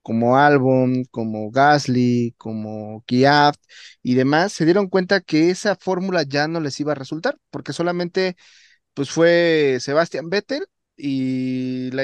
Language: Spanish